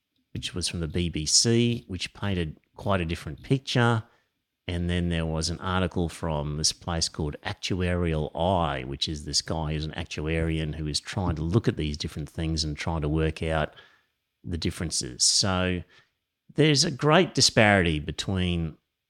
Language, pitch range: English, 80-105 Hz